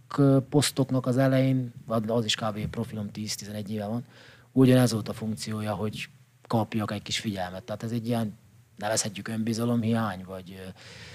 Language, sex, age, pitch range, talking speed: Hungarian, male, 30-49, 105-135 Hz, 140 wpm